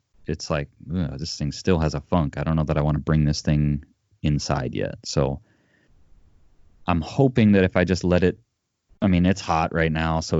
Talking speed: 215 wpm